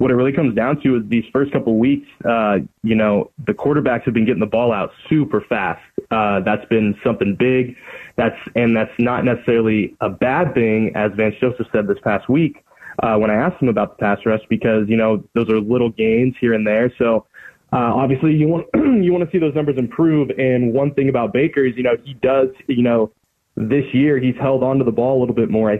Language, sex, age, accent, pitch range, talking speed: English, male, 20-39, American, 110-130 Hz, 235 wpm